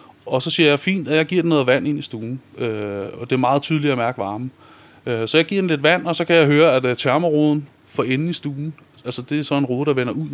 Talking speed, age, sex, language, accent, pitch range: 290 wpm, 30-49, male, Danish, native, 125-155 Hz